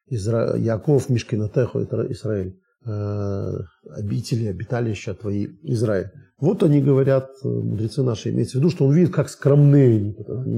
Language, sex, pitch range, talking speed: Russian, male, 115-170 Hz, 135 wpm